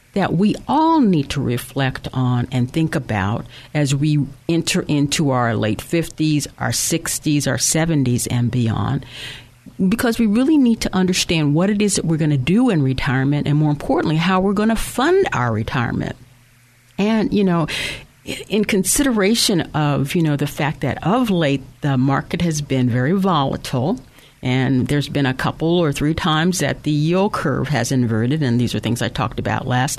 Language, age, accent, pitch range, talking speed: English, 50-69, American, 130-180 Hz, 180 wpm